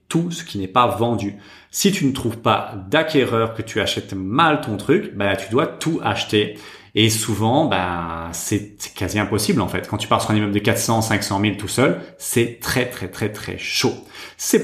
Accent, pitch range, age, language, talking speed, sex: French, 105-130 Hz, 30-49, French, 210 wpm, male